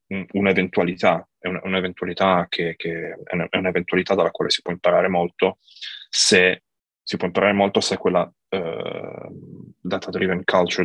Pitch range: 90-100 Hz